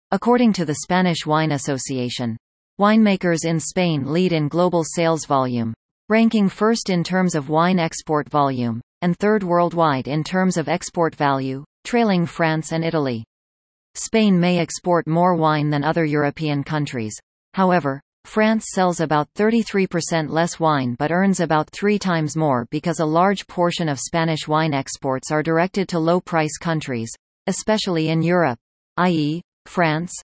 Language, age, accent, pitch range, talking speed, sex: English, 40-59, American, 145-180 Hz, 145 wpm, female